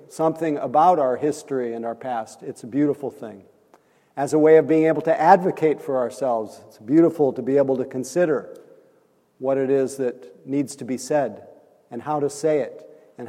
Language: English